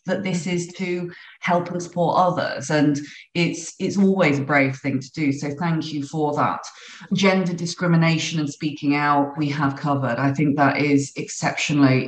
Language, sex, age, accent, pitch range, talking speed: English, female, 30-49, British, 140-160 Hz, 170 wpm